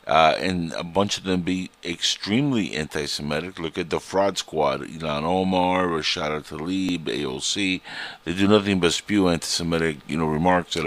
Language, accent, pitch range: English, American, 80-100 Hz